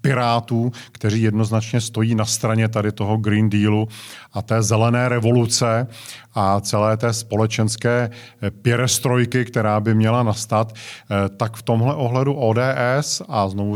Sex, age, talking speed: male, 40-59, 130 wpm